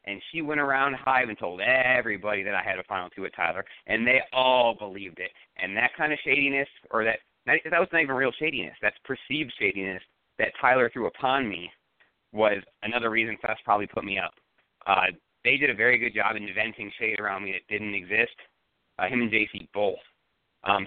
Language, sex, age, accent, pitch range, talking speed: English, male, 30-49, American, 105-125 Hz, 205 wpm